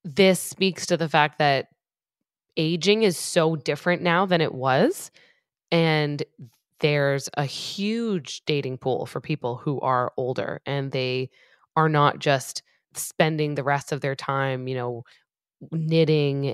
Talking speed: 140 wpm